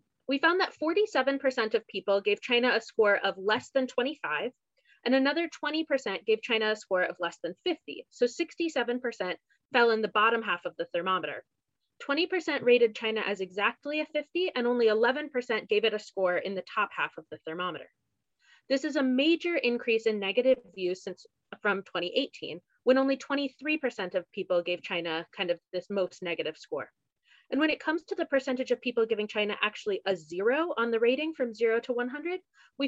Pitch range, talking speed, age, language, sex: 200-285 Hz, 185 wpm, 20-39, English, female